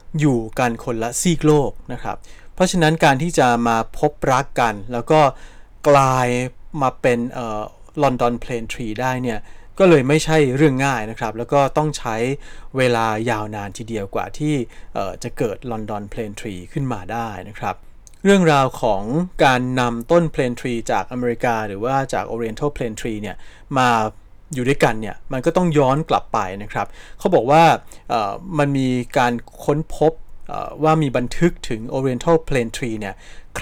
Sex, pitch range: male, 115-150 Hz